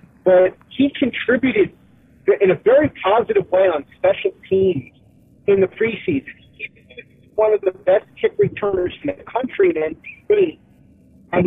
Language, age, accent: English, 40-59, American